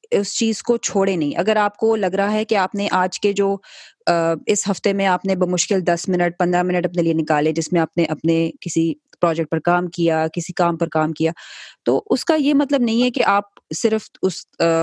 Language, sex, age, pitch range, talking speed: Urdu, female, 20-39, 175-220 Hz, 225 wpm